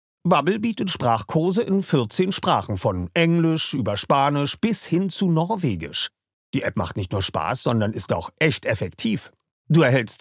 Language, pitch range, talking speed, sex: German, 120-180 Hz, 160 wpm, male